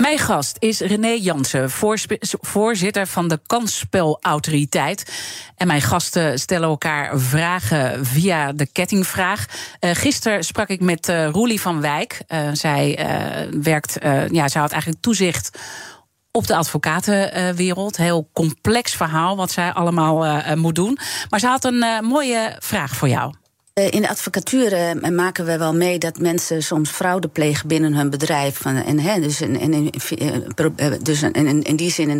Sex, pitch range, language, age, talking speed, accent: female, 145-180 Hz, Dutch, 40-59, 150 wpm, Dutch